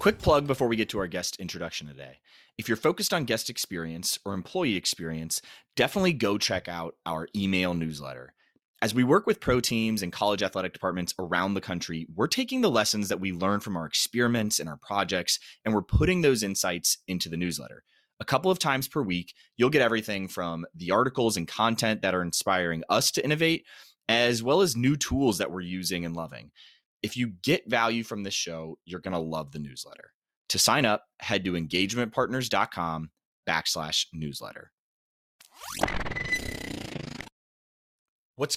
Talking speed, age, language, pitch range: 175 wpm, 30-49, English, 90-125 Hz